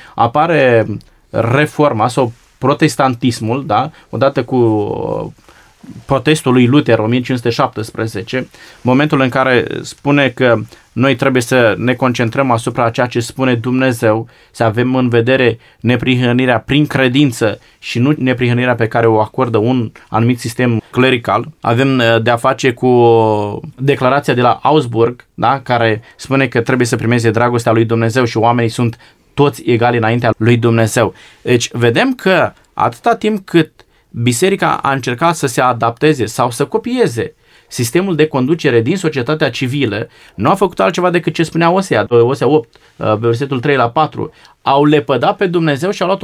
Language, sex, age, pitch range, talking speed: Romanian, male, 20-39, 120-145 Hz, 145 wpm